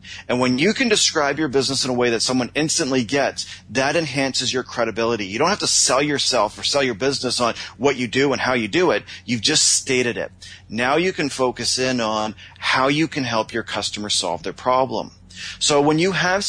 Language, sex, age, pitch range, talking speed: English, male, 40-59, 100-135 Hz, 220 wpm